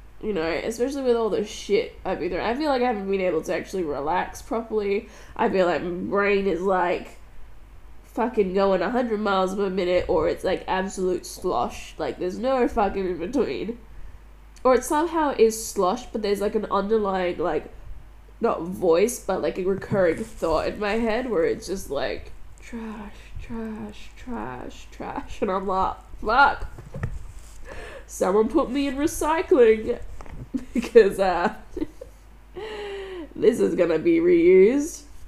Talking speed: 155 wpm